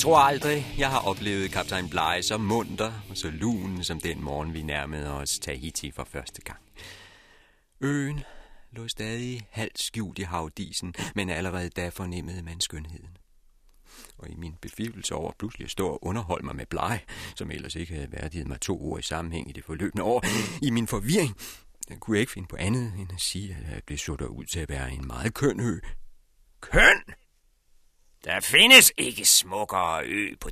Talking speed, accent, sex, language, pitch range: 185 wpm, native, male, Danish, 80-115 Hz